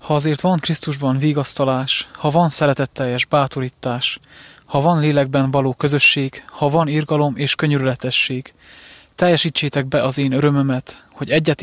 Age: 20-39